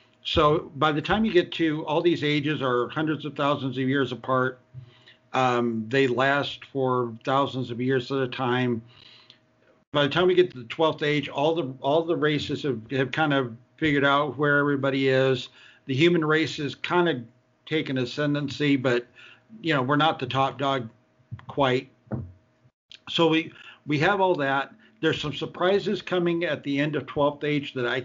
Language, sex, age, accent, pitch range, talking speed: English, male, 50-69, American, 125-150 Hz, 180 wpm